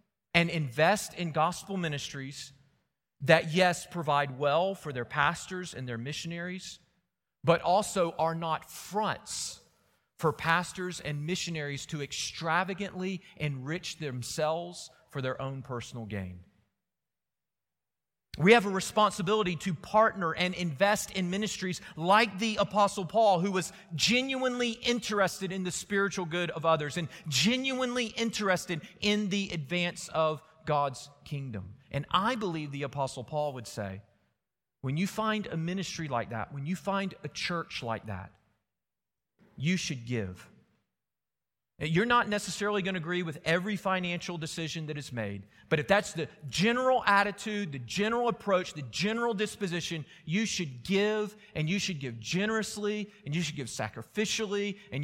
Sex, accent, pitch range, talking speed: male, American, 145-200 Hz, 140 wpm